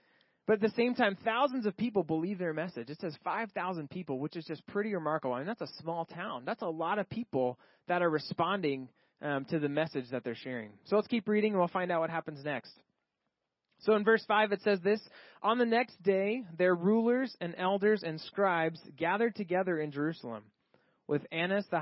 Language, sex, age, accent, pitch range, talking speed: English, male, 20-39, American, 155-205 Hz, 210 wpm